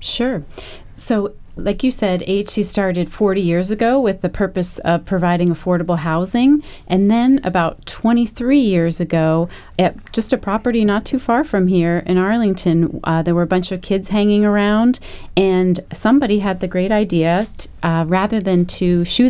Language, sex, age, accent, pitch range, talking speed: English, female, 30-49, American, 170-205 Hz, 170 wpm